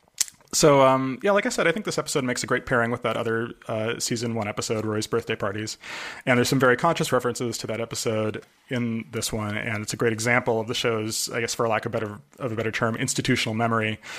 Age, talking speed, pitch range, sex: 30-49, 235 wpm, 115-125 Hz, male